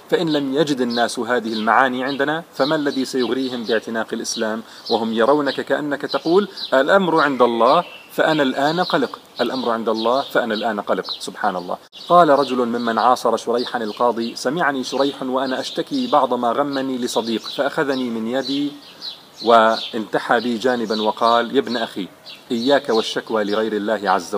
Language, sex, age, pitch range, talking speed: Arabic, male, 40-59, 115-145 Hz, 145 wpm